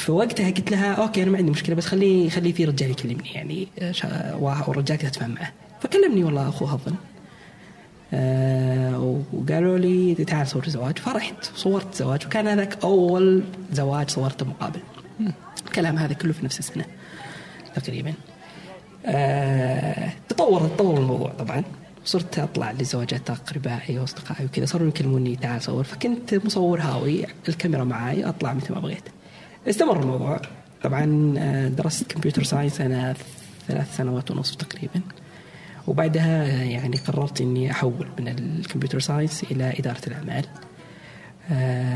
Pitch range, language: 135-175 Hz, Arabic